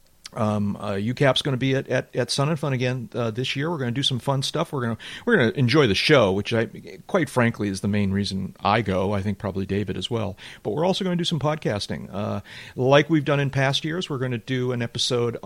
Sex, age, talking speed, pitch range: male, 40-59, 270 wpm, 100-130 Hz